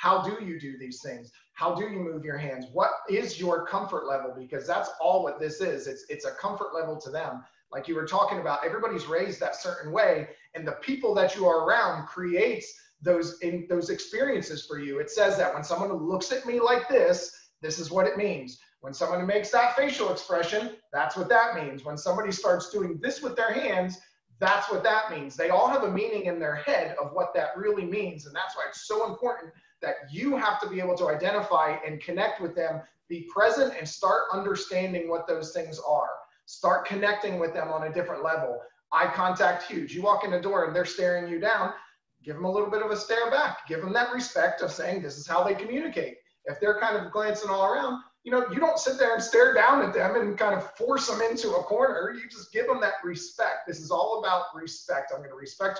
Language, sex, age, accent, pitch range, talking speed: English, male, 30-49, American, 165-225 Hz, 230 wpm